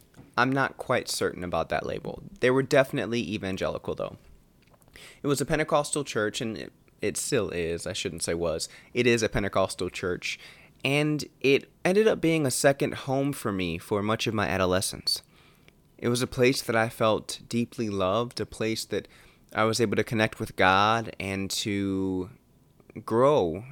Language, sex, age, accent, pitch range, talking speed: English, male, 20-39, American, 95-125 Hz, 170 wpm